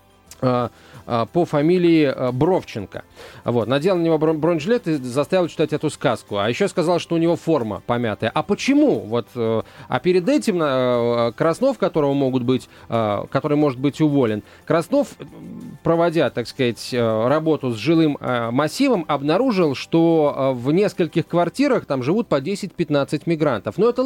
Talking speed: 125 wpm